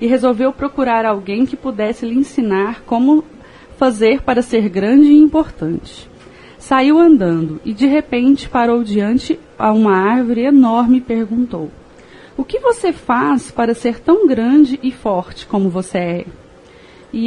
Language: Portuguese